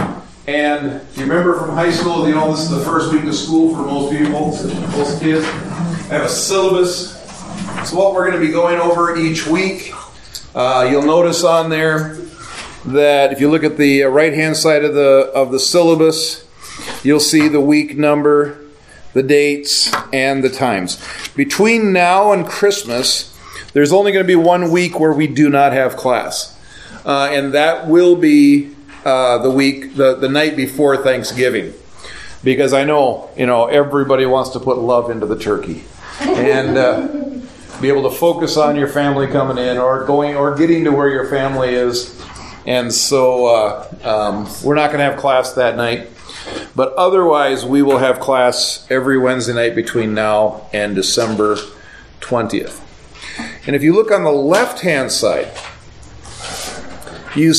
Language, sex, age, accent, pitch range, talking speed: English, male, 40-59, American, 130-160 Hz, 170 wpm